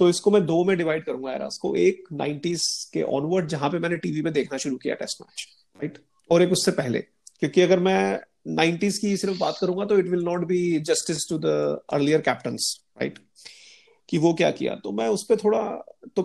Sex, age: male, 30-49